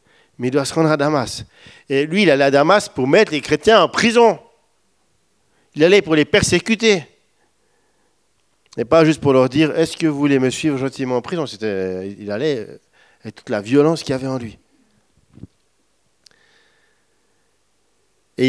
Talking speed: 170 wpm